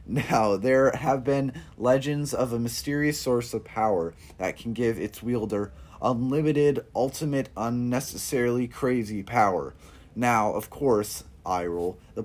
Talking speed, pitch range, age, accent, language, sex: 130 wpm, 100-125 Hz, 20-39, American, English, male